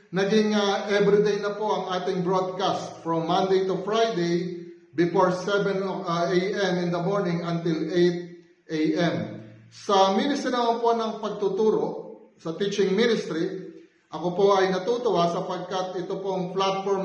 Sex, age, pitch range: male, 30-49, 170-200 Hz